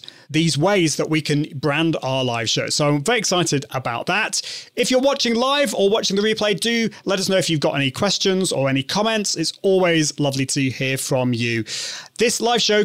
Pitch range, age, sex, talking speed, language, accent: 140-200 Hz, 30-49, male, 210 wpm, English, British